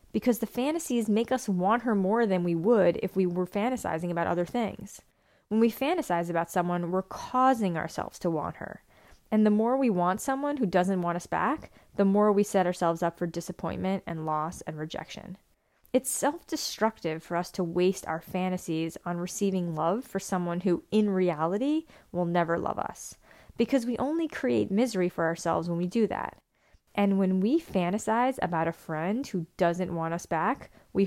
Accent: American